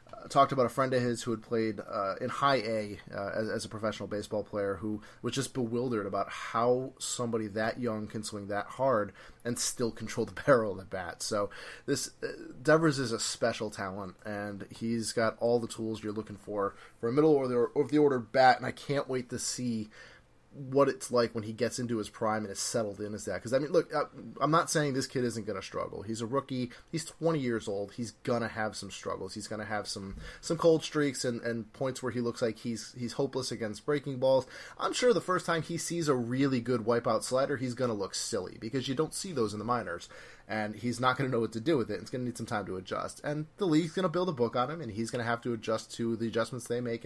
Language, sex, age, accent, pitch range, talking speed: English, male, 20-39, American, 110-130 Hz, 250 wpm